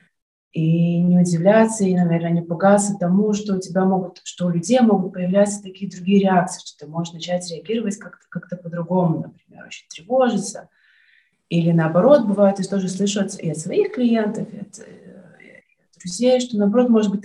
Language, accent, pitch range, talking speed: Russian, native, 170-205 Hz, 175 wpm